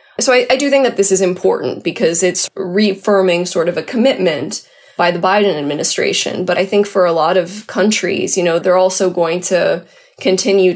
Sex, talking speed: female, 195 wpm